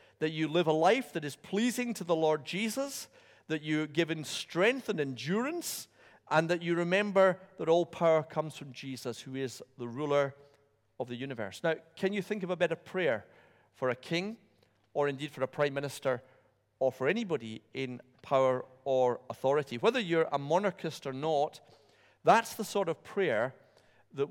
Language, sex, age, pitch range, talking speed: English, male, 50-69, 120-160 Hz, 175 wpm